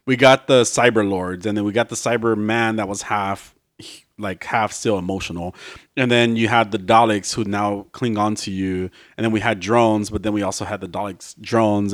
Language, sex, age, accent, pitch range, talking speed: English, male, 30-49, American, 105-150 Hz, 220 wpm